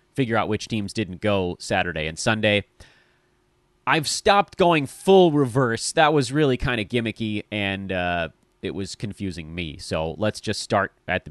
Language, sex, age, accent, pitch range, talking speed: English, male, 30-49, American, 110-155 Hz, 170 wpm